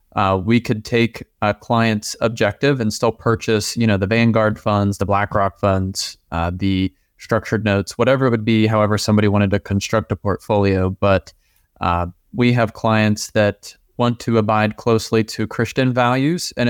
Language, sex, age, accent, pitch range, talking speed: English, male, 20-39, American, 105-120 Hz, 170 wpm